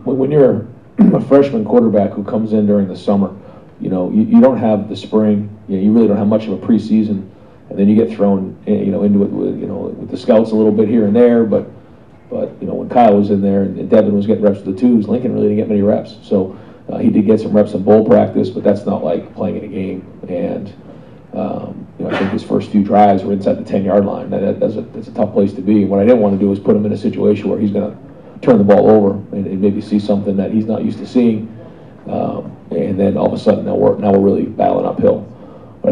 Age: 40-59